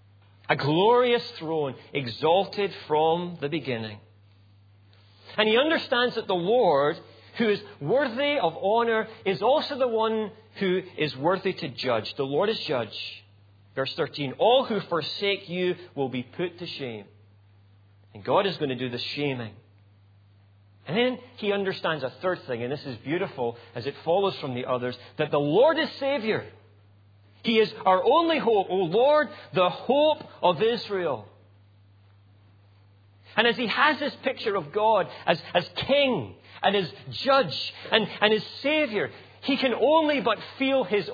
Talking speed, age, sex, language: 155 wpm, 40-59, male, English